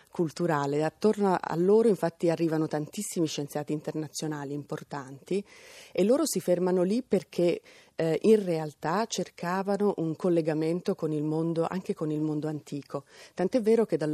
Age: 30-49